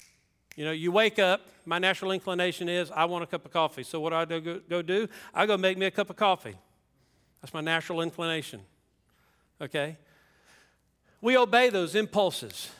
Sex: male